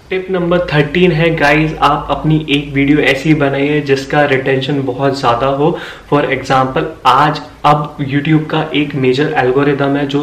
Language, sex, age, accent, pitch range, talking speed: Hindi, male, 20-39, native, 135-155 Hz, 160 wpm